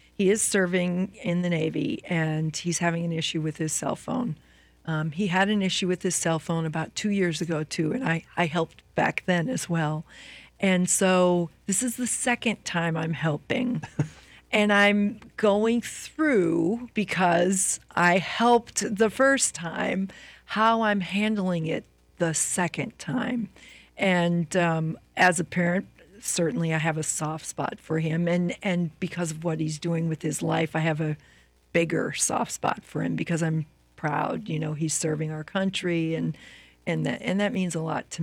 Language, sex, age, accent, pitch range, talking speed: English, female, 40-59, American, 160-195 Hz, 175 wpm